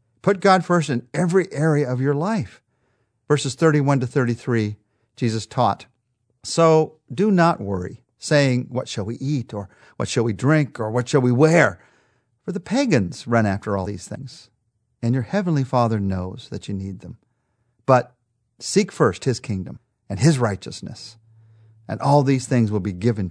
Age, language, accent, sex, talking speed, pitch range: 50-69, English, American, male, 170 wpm, 110-150 Hz